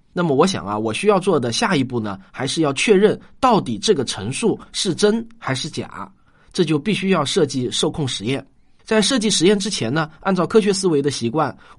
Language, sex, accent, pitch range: Chinese, male, native, 130-210 Hz